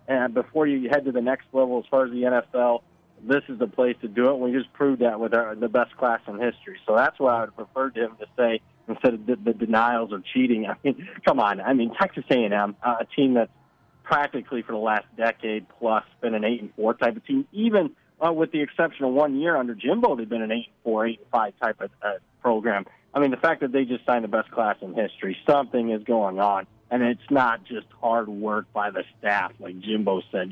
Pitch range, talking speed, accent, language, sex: 110-130 Hz, 245 wpm, American, English, male